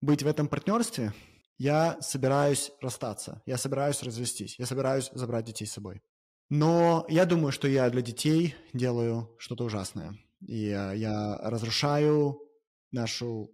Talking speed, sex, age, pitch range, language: 135 wpm, male, 20-39, 115-140 Hz, Russian